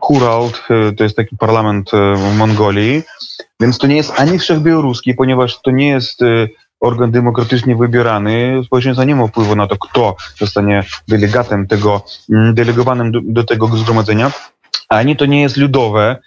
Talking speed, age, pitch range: 145 wpm, 20-39, 115-145 Hz